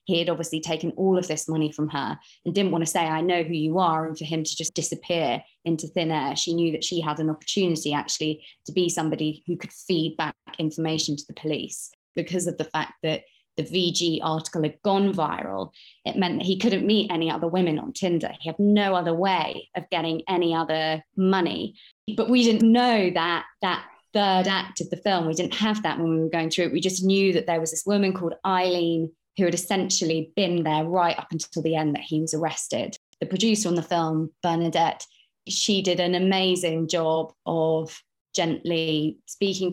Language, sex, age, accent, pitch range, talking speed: English, female, 20-39, British, 160-180 Hz, 210 wpm